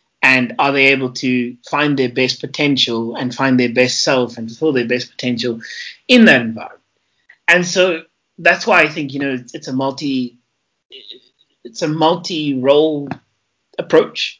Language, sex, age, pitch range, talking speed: English, male, 30-49, 125-160 Hz, 160 wpm